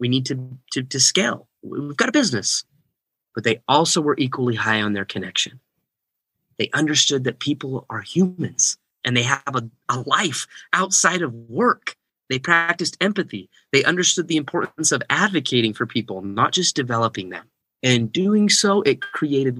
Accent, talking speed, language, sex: American, 165 wpm, English, male